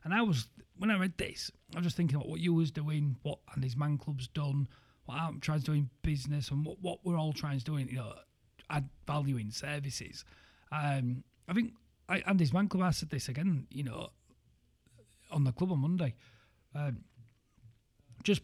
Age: 40-59